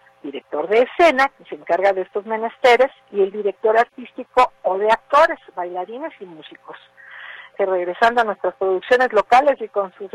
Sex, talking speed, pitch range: female, 160 wpm, 190-250 Hz